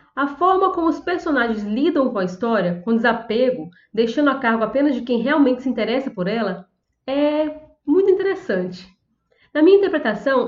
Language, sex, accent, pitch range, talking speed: Portuguese, female, Brazilian, 225-300 Hz, 160 wpm